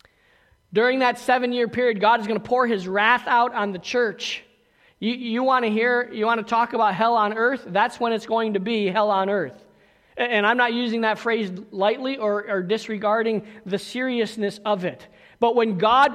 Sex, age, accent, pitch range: male, 40-59, American, 195-235 Hz